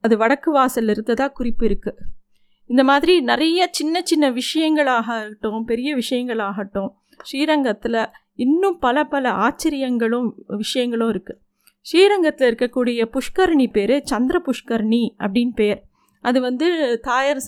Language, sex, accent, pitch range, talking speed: Tamil, female, native, 225-290 Hz, 100 wpm